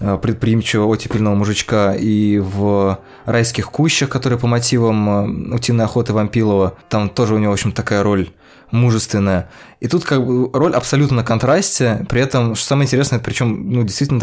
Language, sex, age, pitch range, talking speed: Russian, male, 20-39, 105-130 Hz, 160 wpm